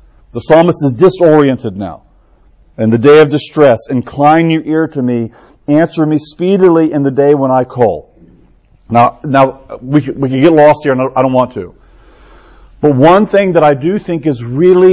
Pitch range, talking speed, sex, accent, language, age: 135-175 Hz, 190 wpm, male, American, English, 50-69